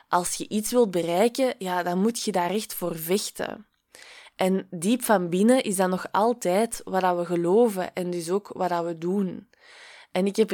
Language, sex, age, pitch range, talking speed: Dutch, female, 20-39, 185-225 Hz, 190 wpm